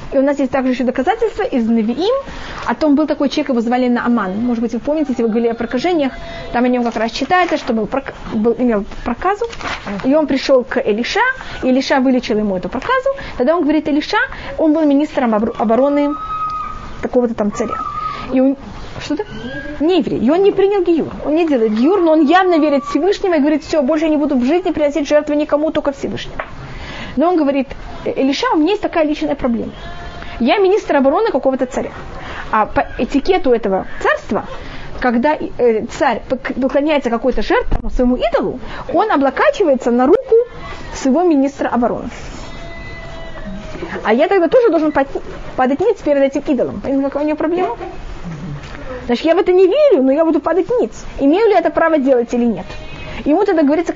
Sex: female